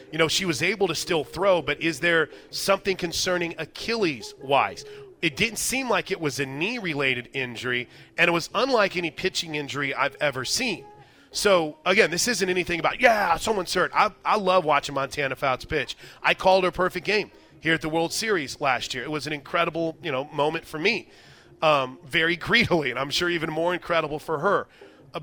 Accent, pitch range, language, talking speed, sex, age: American, 145-180 Hz, English, 195 wpm, male, 30-49